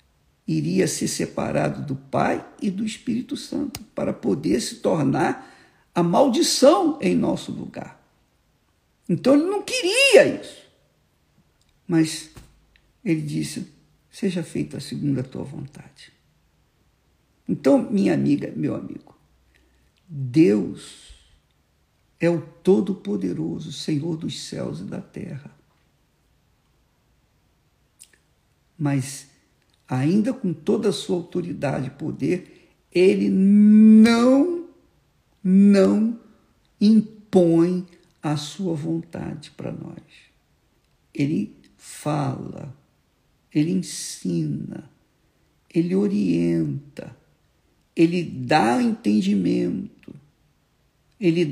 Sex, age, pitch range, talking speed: male, 50-69, 140-210 Hz, 90 wpm